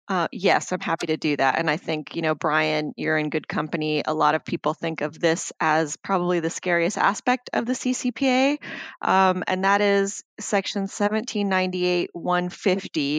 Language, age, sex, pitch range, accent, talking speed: English, 30-49, female, 160-190 Hz, American, 170 wpm